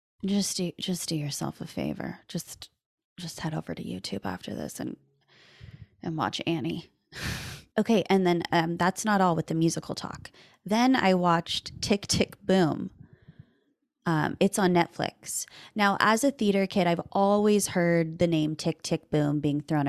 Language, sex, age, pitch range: English, female, 20-39, 160-195 Hz